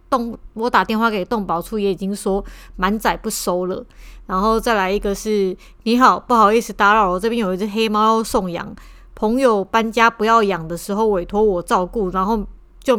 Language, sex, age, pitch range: Chinese, female, 20-39, 195-235 Hz